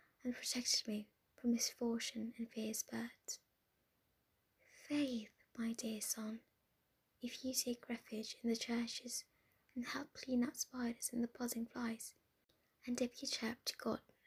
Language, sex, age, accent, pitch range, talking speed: English, female, 10-29, British, 225-250 Hz, 145 wpm